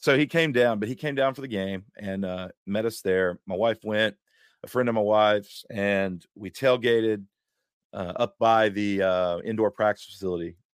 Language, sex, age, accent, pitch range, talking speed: English, male, 40-59, American, 95-110 Hz, 195 wpm